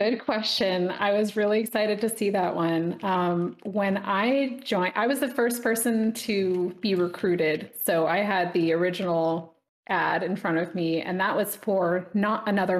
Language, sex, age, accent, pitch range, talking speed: English, female, 30-49, American, 180-230 Hz, 180 wpm